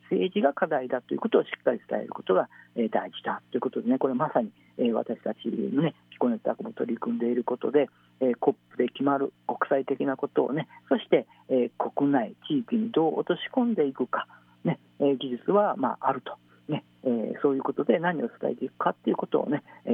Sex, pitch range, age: male, 125-180 Hz, 50-69